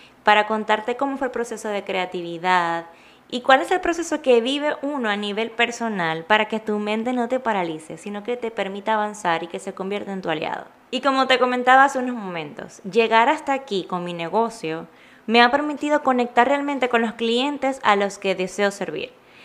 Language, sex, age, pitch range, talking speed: Spanish, female, 20-39, 195-255 Hz, 195 wpm